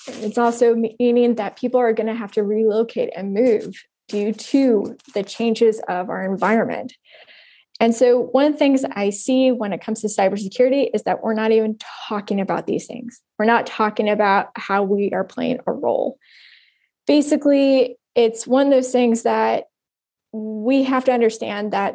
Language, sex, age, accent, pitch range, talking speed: English, female, 20-39, American, 200-240 Hz, 175 wpm